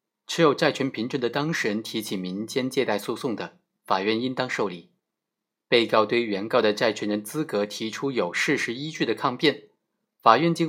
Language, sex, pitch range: Chinese, male, 105-140 Hz